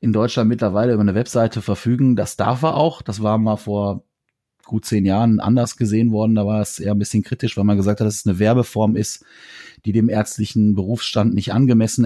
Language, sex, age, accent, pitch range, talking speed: German, male, 30-49, German, 105-120 Hz, 215 wpm